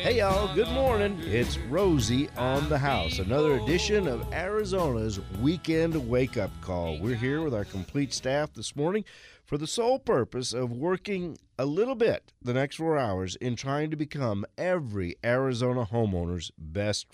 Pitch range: 110-155 Hz